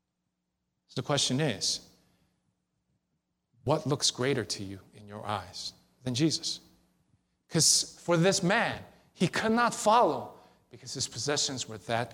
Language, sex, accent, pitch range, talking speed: English, male, American, 105-140 Hz, 130 wpm